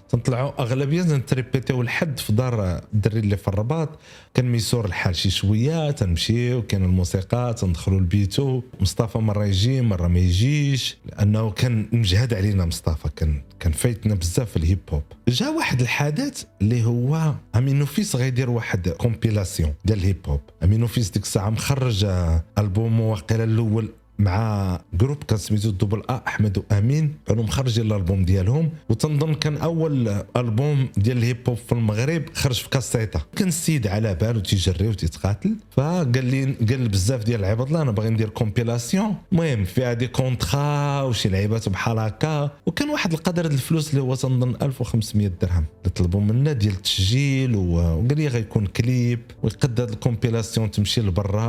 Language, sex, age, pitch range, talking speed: Arabic, male, 40-59, 100-130 Hz, 145 wpm